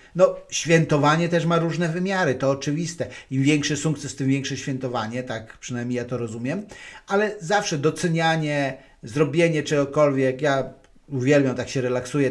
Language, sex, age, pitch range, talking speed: Polish, male, 50-69, 130-165 Hz, 140 wpm